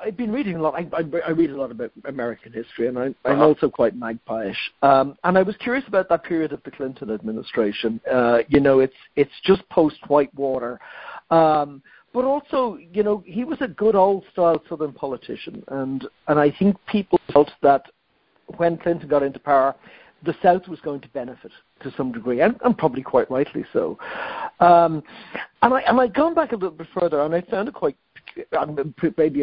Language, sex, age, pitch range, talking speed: English, male, 60-79, 135-200 Hz, 200 wpm